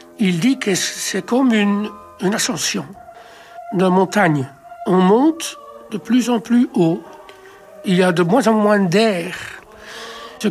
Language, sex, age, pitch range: French, male, 60-79, 180-230 Hz